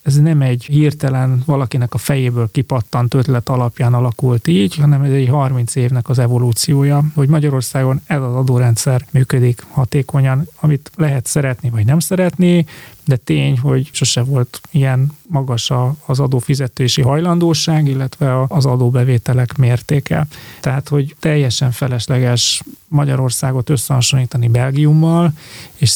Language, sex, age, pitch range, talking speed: Hungarian, male, 30-49, 125-145 Hz, 125 wpm